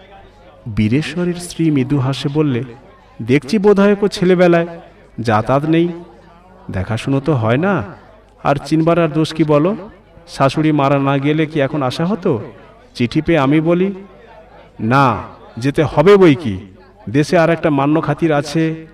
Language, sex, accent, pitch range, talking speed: Bengali, male, native, 125-165 Hz, 135 wpm